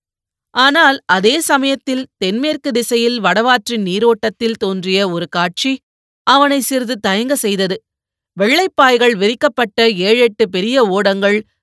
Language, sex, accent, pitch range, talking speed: Tamil, female, native, 195-245 Hz, 100 wpm